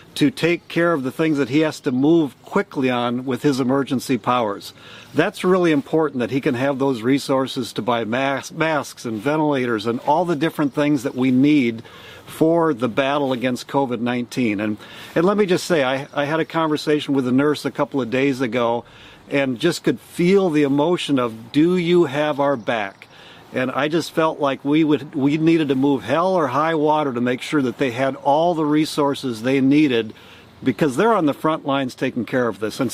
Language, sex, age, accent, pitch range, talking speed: English, male, 50-69, American, 130-155 Hz, 205 wpm